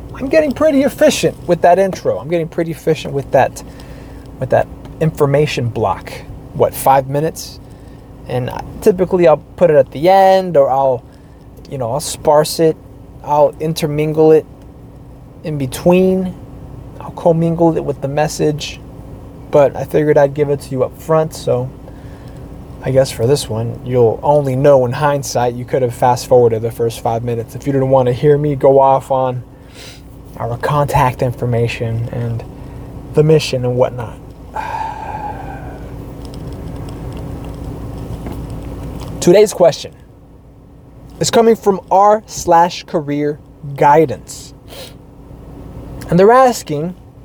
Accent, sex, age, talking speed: American, male, 20-39, 135 wpm